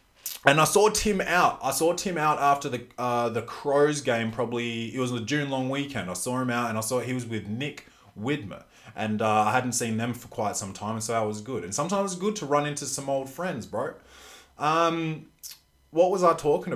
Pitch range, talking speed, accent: 105-135 Hz, 235 wpm, Australian